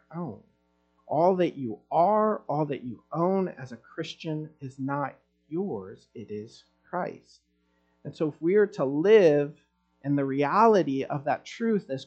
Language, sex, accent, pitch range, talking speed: English, male, American, 115-165 Hz, 160 wpm